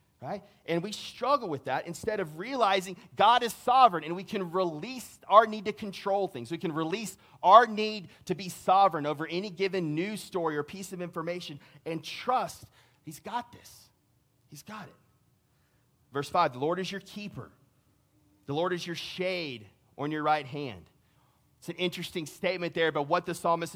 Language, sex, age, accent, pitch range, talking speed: English, male, 30-49, American, 150-195 Hz, 180 wpm